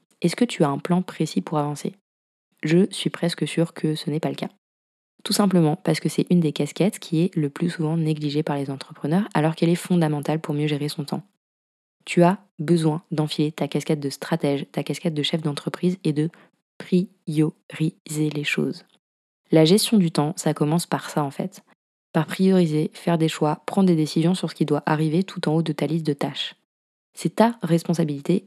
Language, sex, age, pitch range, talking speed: French, female, 20-39, 150-175 Hz, 205 wpm